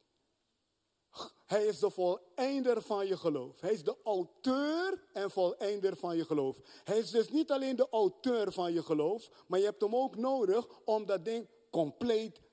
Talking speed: 170 wpm